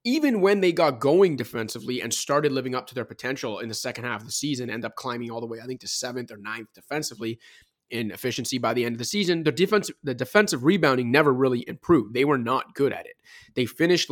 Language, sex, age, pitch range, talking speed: English, male, 30-49, 125-155 Hz, 240 wpm